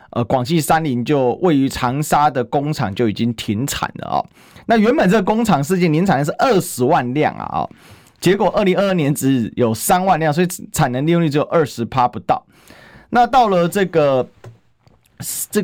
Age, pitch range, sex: 30-49, 120-170 Hz, male